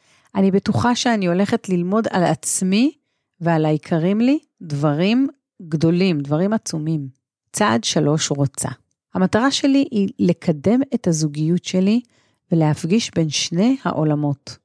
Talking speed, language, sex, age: 115 wpm, Hebrew, female, 40-59